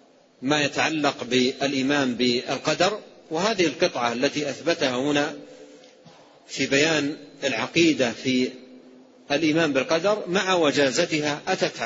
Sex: male